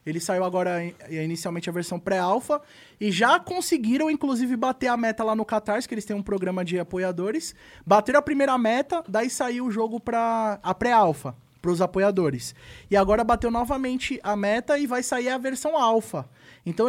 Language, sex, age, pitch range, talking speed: Portuguese, male, 20-39, 205-270 Hz, 180 wpm